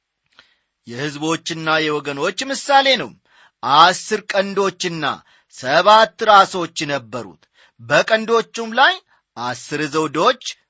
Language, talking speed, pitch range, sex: English, 90 wpm, 145-215 Hz, male